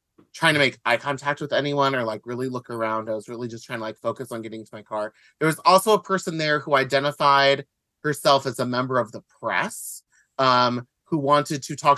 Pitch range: 120-150 Hz